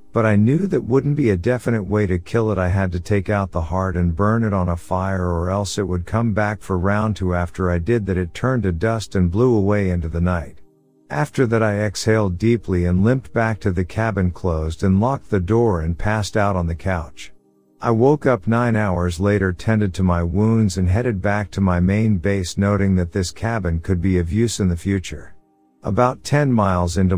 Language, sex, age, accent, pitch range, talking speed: English, male, 50-69, American, 90-110 Hz, 225 wpm